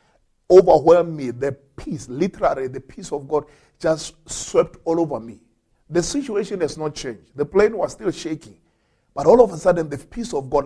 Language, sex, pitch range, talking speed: English, male, 125-165 Hz, 185 wpm